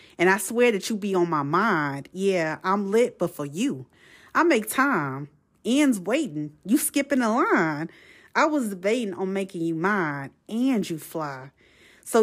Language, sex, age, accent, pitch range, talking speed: English, female, 30-49, American, 165-225 Hz, 170 wpm